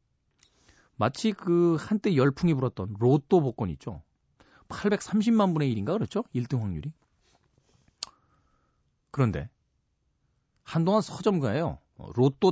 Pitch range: 105-155 Hz